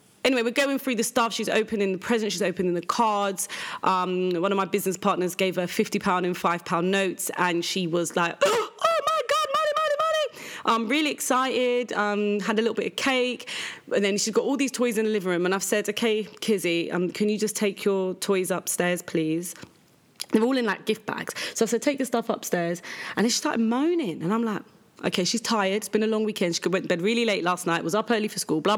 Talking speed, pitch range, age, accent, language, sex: 240 wpm, 180-225 Hz, 30-49, British, English, female